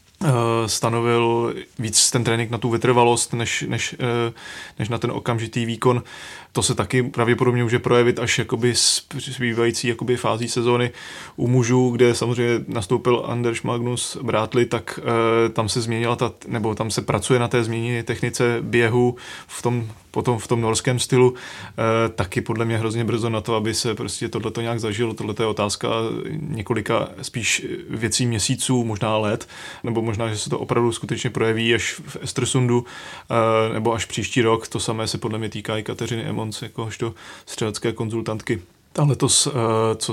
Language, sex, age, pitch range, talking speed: Czech, male, 20-39, 115-120 Hz, 160 wpm